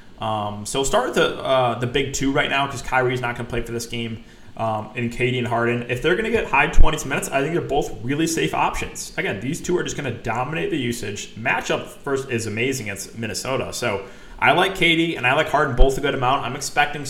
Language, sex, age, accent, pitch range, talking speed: English, male, 20-39, American, 120-145 Hz, 245 wpm